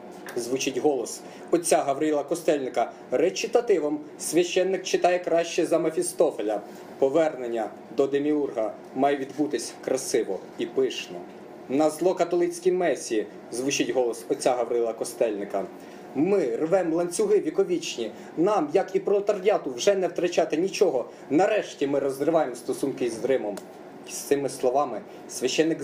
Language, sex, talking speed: Czech, male, 115 wpm